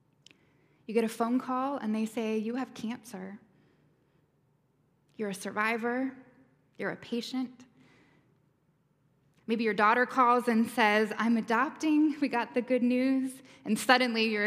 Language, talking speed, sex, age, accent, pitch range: English, 135 wpm, female, 10-29, American, 195-240 Hz